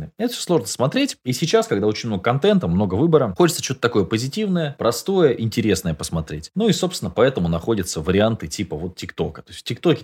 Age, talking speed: 20-39, 190 wpm